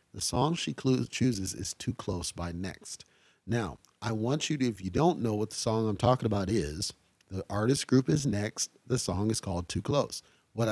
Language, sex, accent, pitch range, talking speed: English, male, American, 95-125 Hz, 205 wpm